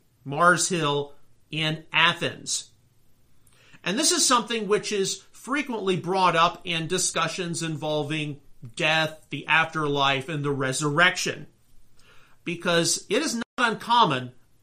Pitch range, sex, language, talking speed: 145-190 Hz, male, English, 110 wpm